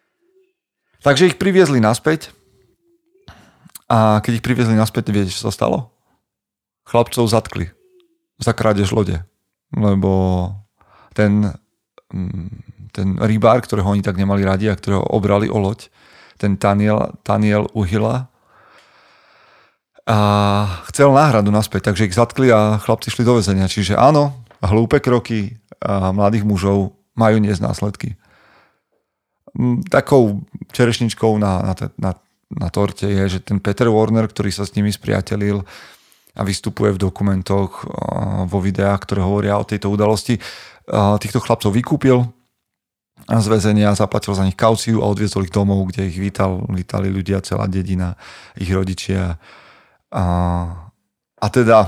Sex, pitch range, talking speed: male, 95-115 Hz, 125 wpm